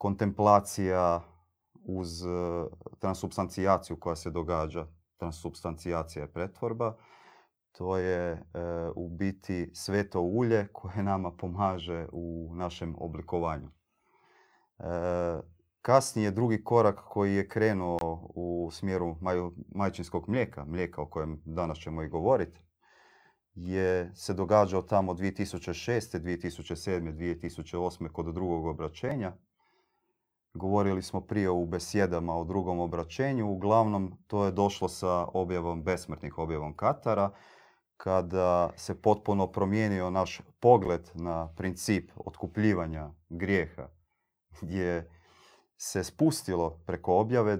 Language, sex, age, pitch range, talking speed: Croatian, male, 30-49, 85-100 Hz, 105 wpm